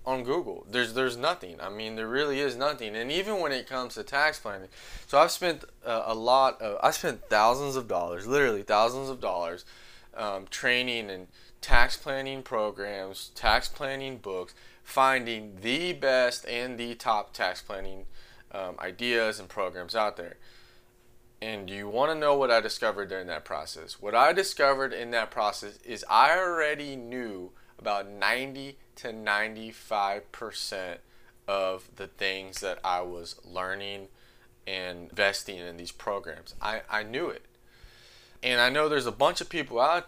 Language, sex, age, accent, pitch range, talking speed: English, male, 20-39, American, 100-130 Hz, 160 wpm